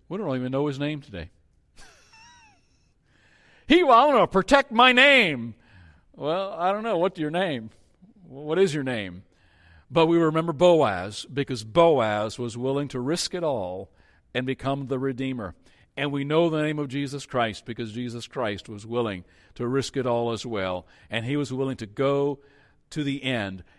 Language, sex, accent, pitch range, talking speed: English, male, American, 105-150 Hz, 170 wpm